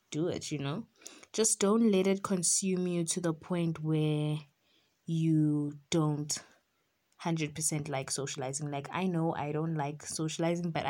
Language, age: English, 20-39